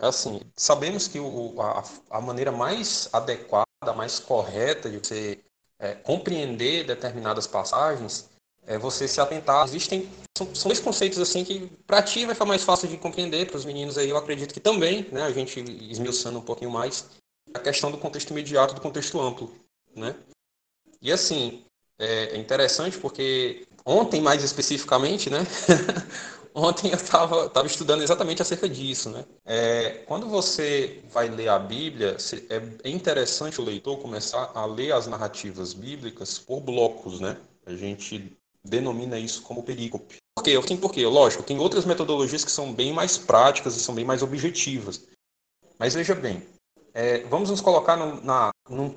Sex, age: male, 20-39